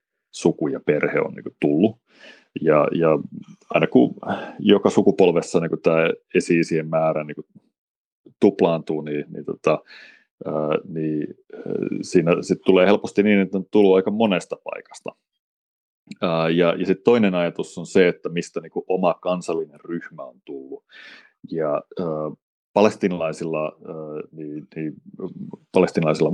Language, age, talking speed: Finnish, 30-49, 120 wpm